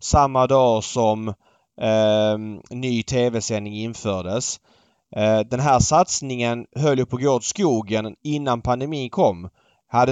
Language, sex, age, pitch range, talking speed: Swedish, male, 30-49, 115-150 Hz, 115 wpm